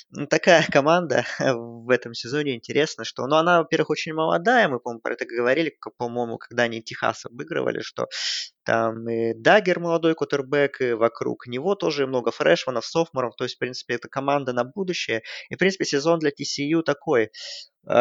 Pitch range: 120-155 Hz